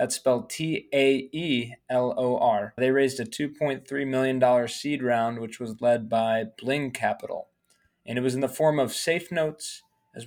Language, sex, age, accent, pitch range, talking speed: English, male, 20-39, American, 115-130 Hz, 150 wpm